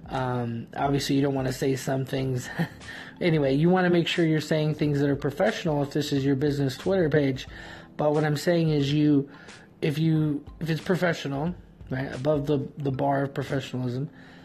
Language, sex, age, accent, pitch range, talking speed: English, male, 20-39, American, 135-160 Hz, 190 wpm